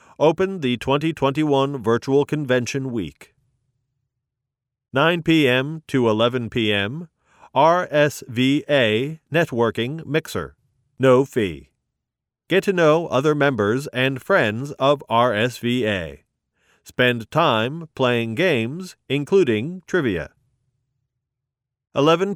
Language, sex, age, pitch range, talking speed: English, male, 40-59, 120-150 Hz, 85 wpm